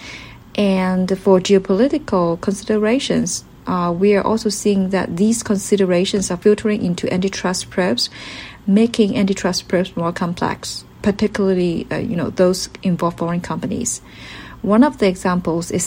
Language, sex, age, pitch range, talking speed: English, female, 40-59, 180-210 Hz, 130 wpm